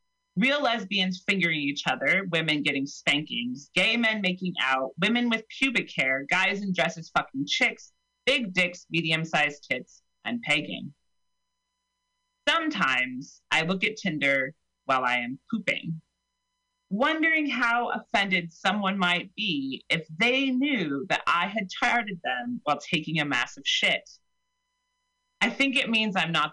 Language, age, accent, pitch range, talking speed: English, 30-49, American, 160-270 Hz, 140 wpm